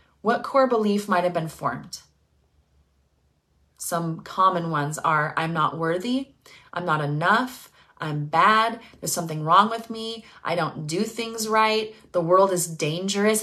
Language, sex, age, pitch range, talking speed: English, female, 30-49, 160-190 Hz, 150 wpm